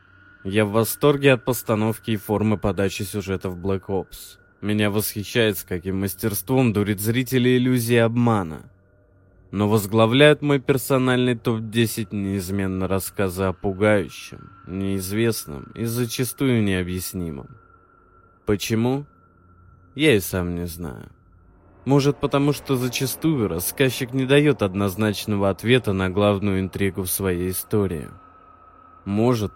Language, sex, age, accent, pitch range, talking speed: Russian, male, 20-39, native, 95-115 Hz, 115 wpm